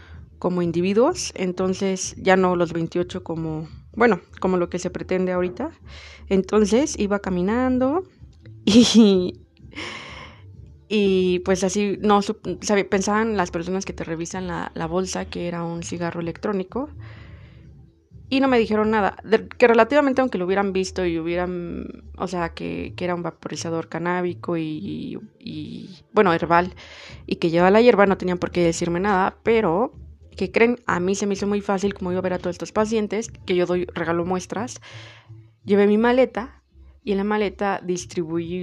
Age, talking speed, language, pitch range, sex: 20-39, 170 wpm, Spanish, 165-195 Hz, female